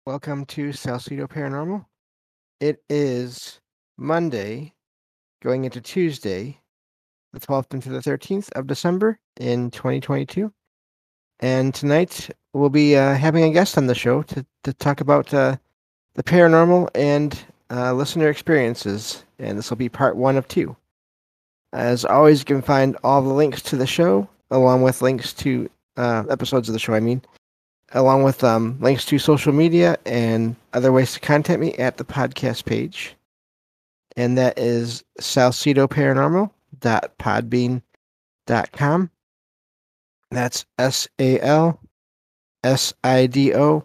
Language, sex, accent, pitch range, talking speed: English, male, American, 120-145 Hz, 130 wpm